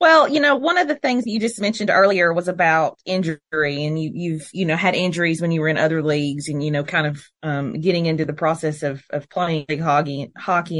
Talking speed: 245 wpm